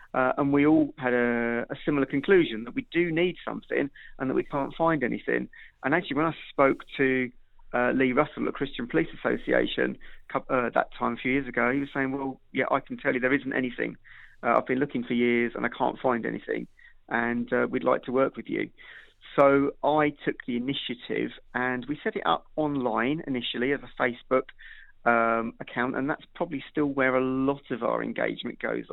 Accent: British